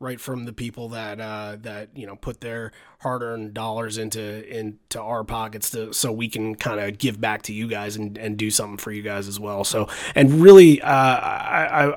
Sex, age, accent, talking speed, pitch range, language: male, 30-49, American, 210 wpm, 110-135 Hz, English